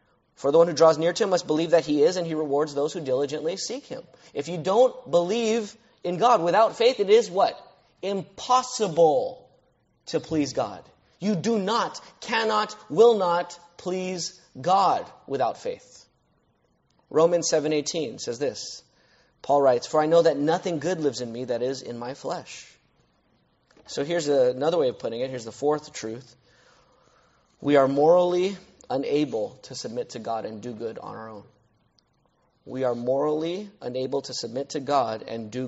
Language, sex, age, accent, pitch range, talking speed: English, male, 30-49, American, 135-205 Hz, 170 wpm